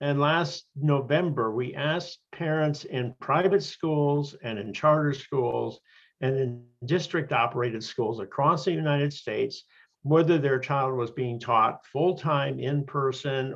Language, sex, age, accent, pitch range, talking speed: English, male, 50-69, American, 130-160 Hz, 135 wpm